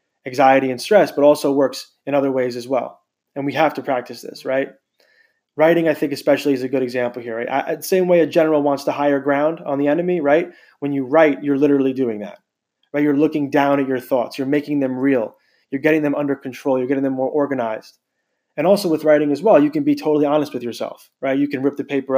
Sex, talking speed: male, 240 wpm